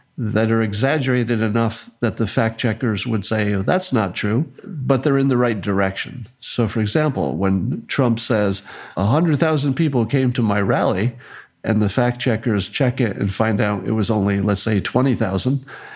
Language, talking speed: English, 165 wpm